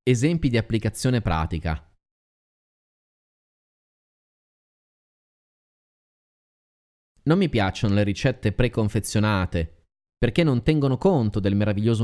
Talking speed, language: 80 wpm, Italian